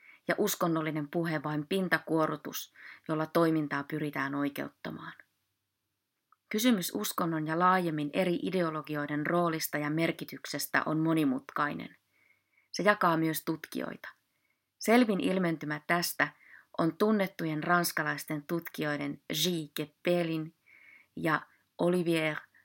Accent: native